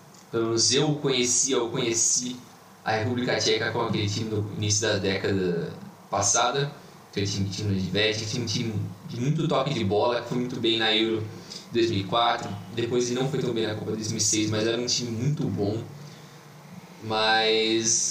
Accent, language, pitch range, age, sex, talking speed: Brazilian, Portuguese, 110-150 Hz, 20-39, male, 165 wpm